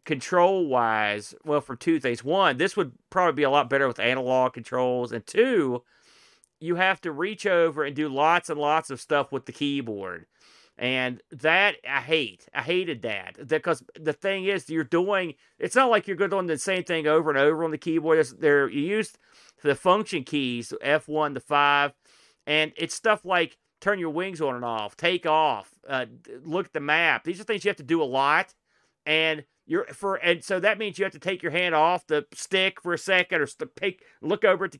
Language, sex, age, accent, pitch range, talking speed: English, male, 40-59, American, 135-175 Hz, 210 wpm